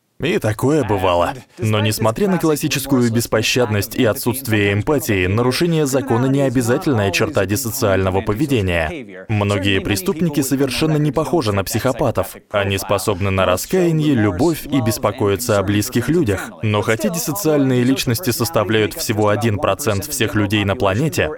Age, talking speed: 20-39, 130 wpm